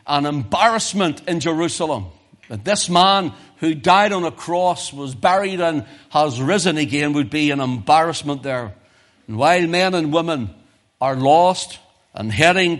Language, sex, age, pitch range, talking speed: English, male, 60-79, 120-185 Hz, 150 wpm